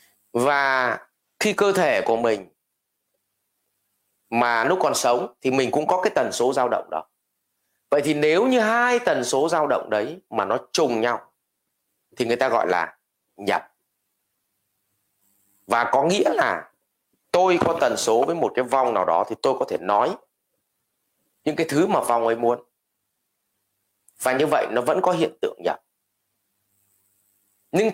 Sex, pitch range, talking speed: male, 100-160 Hz, 165 wpm